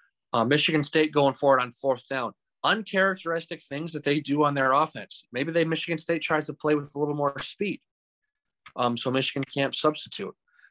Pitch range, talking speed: 120-160 Hz, 185 wpm